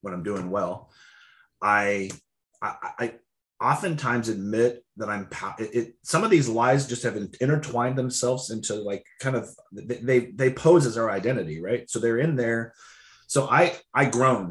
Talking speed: 165 wpm